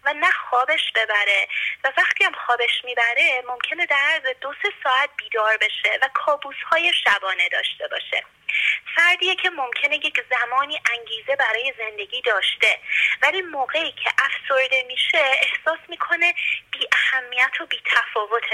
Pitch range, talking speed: 245-350 Hz, 140 wpm